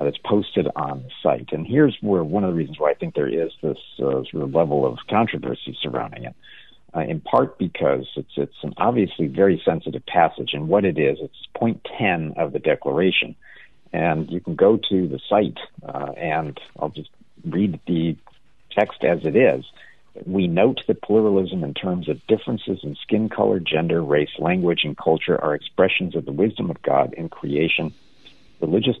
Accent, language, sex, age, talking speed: American, English, male, 60-79, 185 wpm